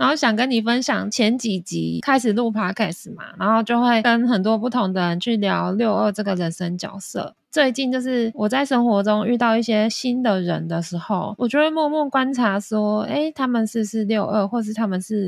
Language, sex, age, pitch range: Chinese, female, 20-39, 195-245 Hz